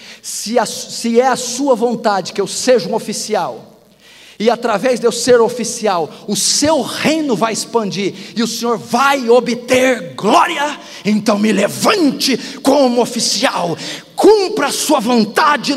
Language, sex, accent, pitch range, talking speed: Portuguese, male, Brazilian, 180-260 Hz, 140 wpm